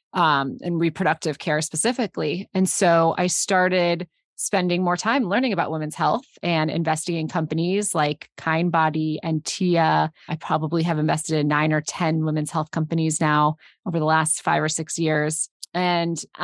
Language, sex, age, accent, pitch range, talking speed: English, female, 30-49, American, 160-190 Hz, 165 wpm